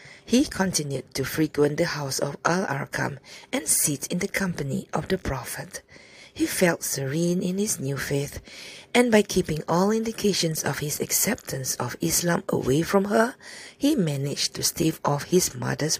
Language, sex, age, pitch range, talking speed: English, female, 50-69, 135-180 Hz, 160 wpm